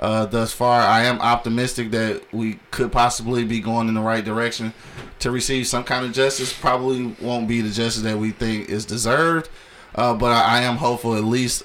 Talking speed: 205 wpm